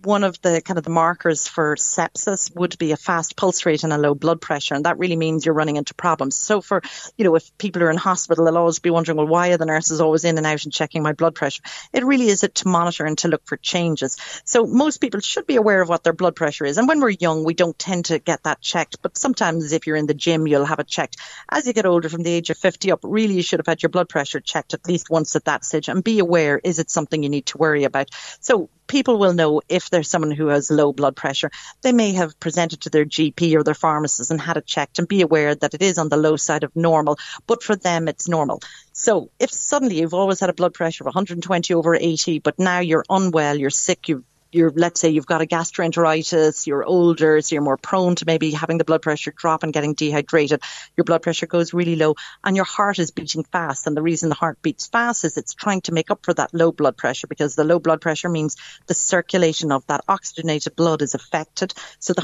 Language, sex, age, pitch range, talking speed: English, female, 40-59, 155-180 Hz, 260 wpm